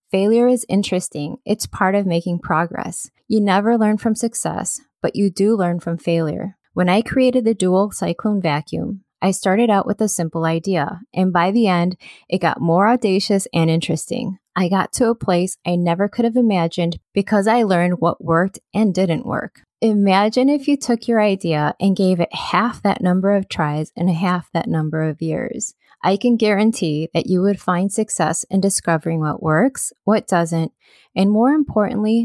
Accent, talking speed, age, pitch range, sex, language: American, 180 wpm, 20-39, 170-215 Hz, female, English